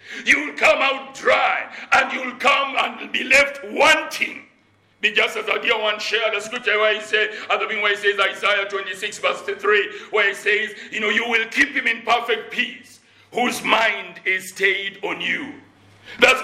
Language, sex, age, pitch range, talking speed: English, male, 60-79, 230-300 Hz, 185 wpm